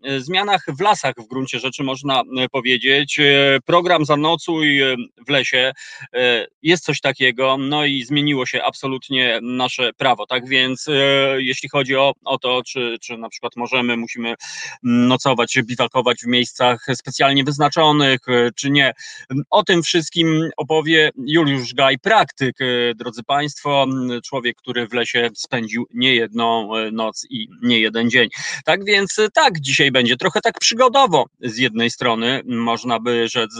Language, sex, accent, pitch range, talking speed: Polish, male, native, 120-150 Hz, 140 wpm